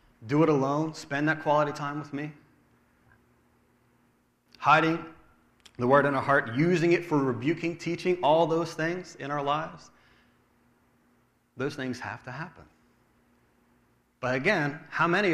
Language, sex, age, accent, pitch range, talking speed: English, male, 30-49, American, 105-165 Hz, 135 wpm